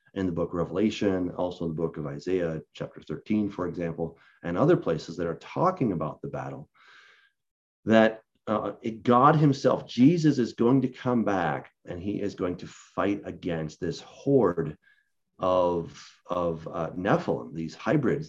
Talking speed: 165 wpm